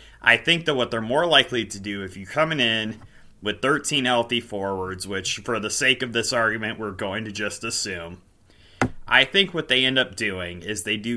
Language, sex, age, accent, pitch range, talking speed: English, male, 30-49, American, 105-125 Hz, 210 wpm